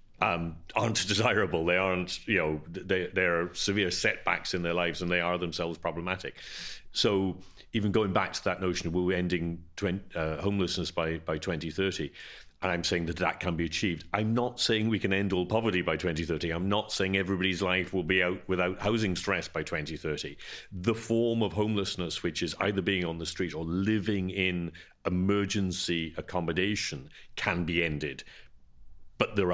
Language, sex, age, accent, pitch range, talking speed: English, male, 40-59, British, 85-100 Hz, 180 wpm